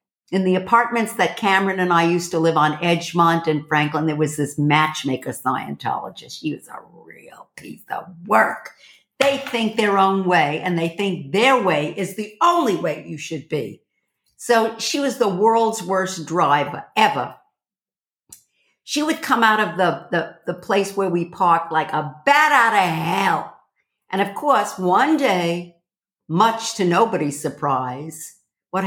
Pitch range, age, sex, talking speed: 160-230 Hz, 60-79, female, 165 wpm